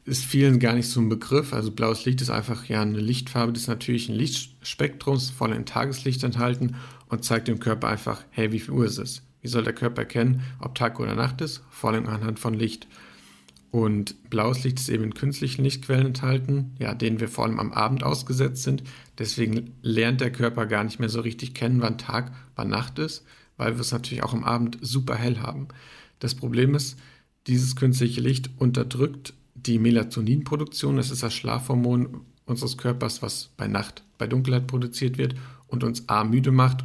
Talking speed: 190 wpm